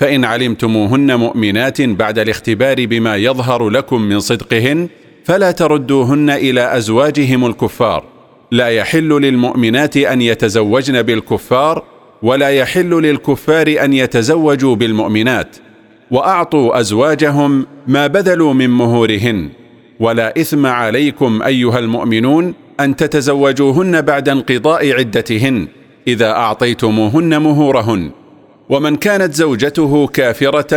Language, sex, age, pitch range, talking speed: Arabic, male, 40-59, 120-150 Hz, 100 wpm